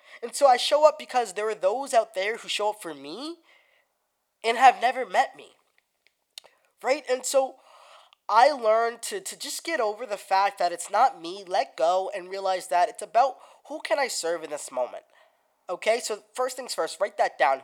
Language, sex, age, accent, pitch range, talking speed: English, male, 20-39, American, 195-295 Hz, 200 wpm